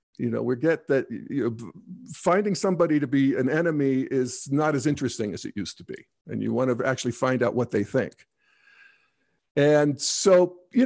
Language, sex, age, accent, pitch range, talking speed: English, male, 50-69, American, 130-180 Hz, 180 wpm